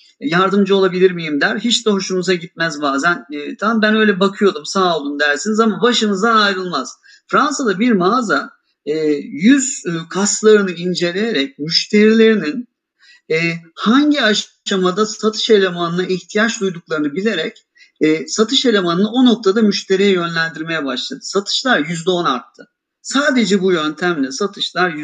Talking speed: 125 wpm